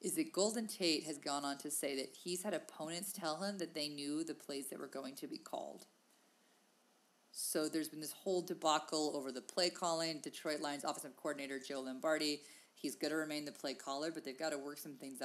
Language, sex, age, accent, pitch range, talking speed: English, female, 30-49, American, 140-190 Hz, 225 wpm